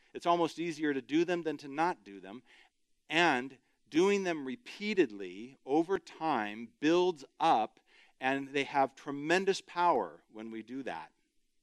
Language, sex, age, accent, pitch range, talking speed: English, male, 40-59, American, 130-205 Hz, 145 wpm